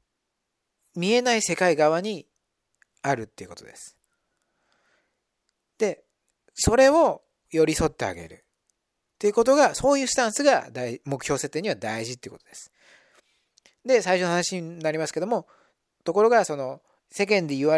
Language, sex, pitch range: Japanese, male, 125-200 Hz